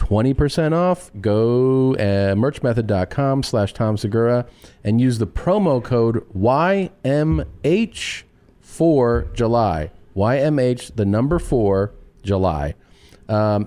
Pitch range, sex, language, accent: 105-135 Hz, male, English, American